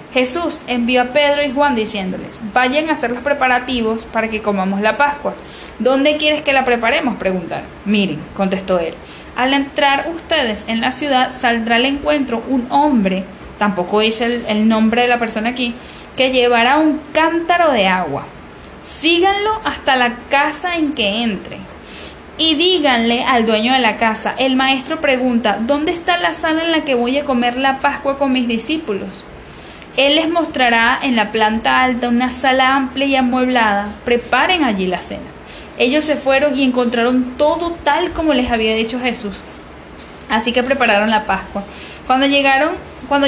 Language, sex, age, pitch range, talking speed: Spanish, female, 10-29, 225-280 Hz, 165 wpm